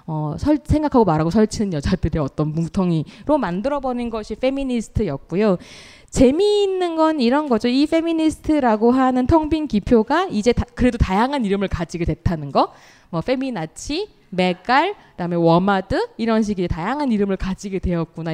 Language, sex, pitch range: Korean, female, 180-275 Hz